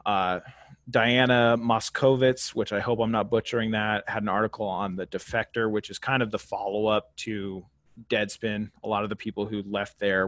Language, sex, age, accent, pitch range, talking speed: English, male, 30-49, American, 105-125 Hz, 185 wpm